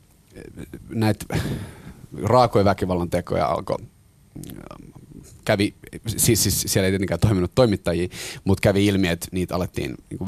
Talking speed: 110 wpm